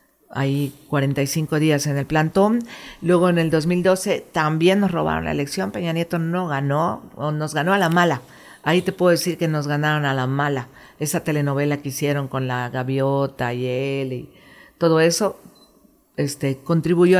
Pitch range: 140-170 Hz